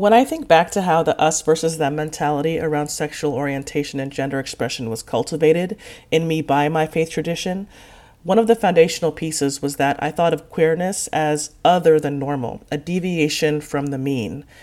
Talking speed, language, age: 185 wpm, English, 30-49